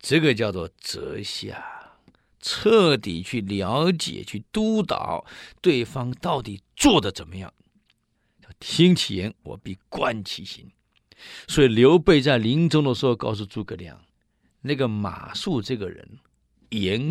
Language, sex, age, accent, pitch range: Chinese, male, 50-69, native, 100-150 Hz